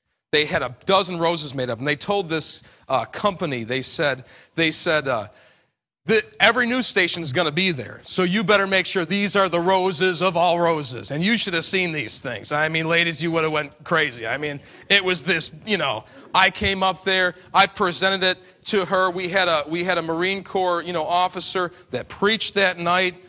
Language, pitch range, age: English, 150-190 Hz, 40-59